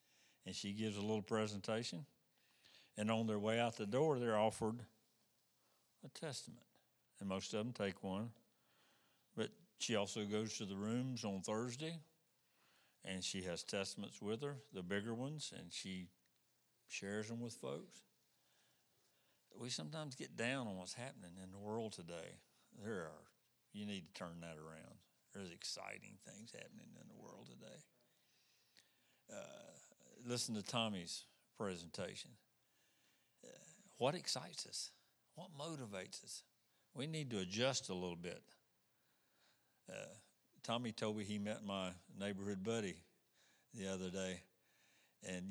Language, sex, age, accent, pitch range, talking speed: English, male, 60-79, American, 95-120 Hz, 140 wpm